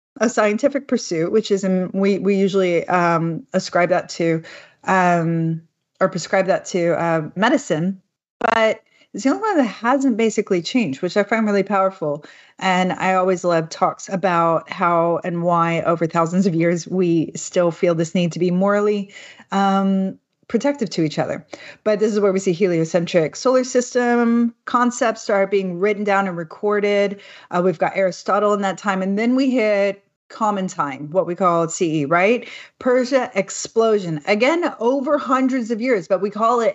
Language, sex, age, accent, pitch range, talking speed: English, female, 30-49, American, 175-220 Hz, 170 wpm